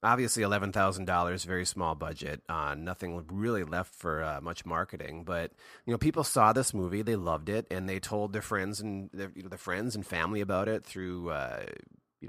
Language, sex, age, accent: English, male, 30-49, American